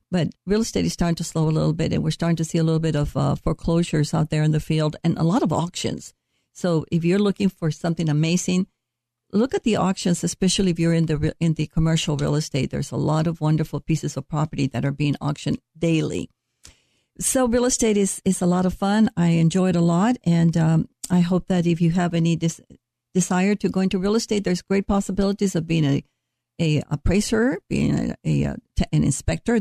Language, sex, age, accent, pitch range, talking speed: English, female, 60-79, American, 160-200 Hz, 215 wpm